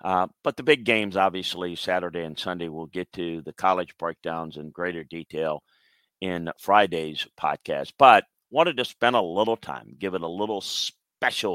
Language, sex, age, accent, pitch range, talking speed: English, male, 50-69, American, 90-120 Hz, 170 wpm